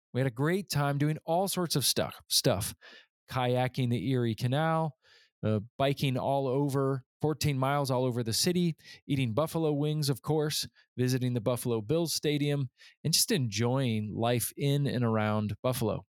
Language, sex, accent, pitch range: English, male, American, 125-155 Hz